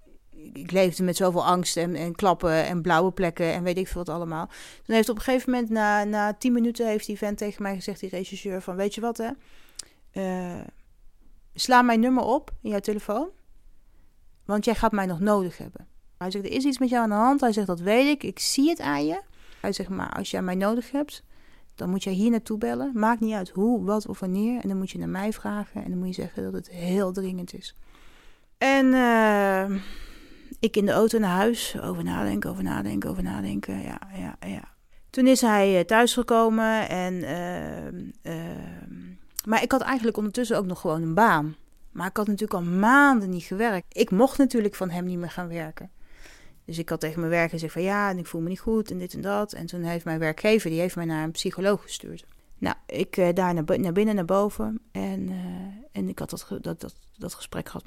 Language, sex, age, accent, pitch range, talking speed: Dutch, female, 30-49, Dutch, 175-225 Hz, 220 wpm